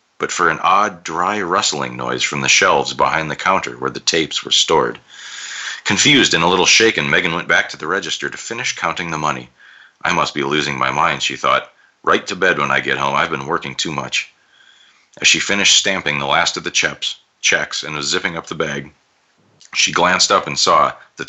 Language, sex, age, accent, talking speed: English, male, 40-59, American, 210 wpm